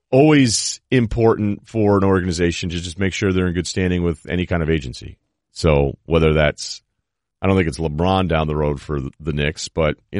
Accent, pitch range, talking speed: American, 85-110 Hz, 200 wpm